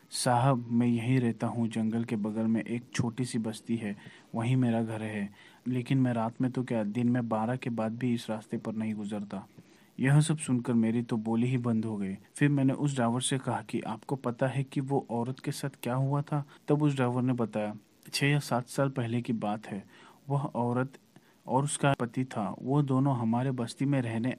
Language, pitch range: Hindi, 115-130 Hz